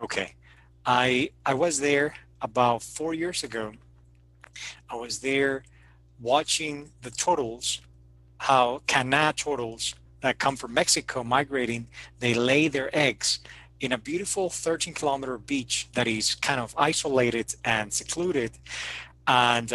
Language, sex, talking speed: English, male, 125 wpm